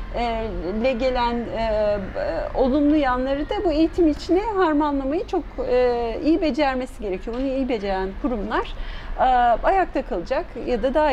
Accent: native